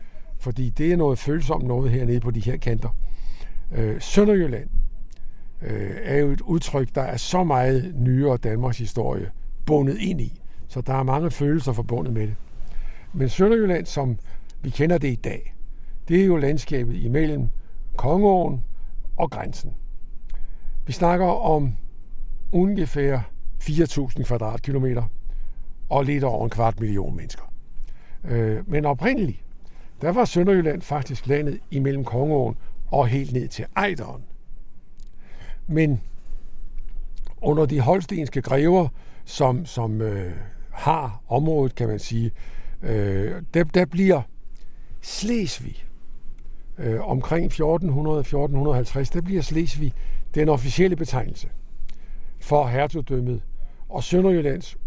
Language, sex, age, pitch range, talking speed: Danish, male, 60-79, 120-155 Hz, 120 wpm